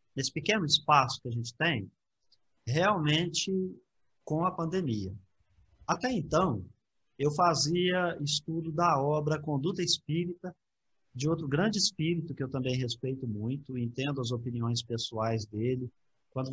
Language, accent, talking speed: Portuguese, Brazilian, 125 wpm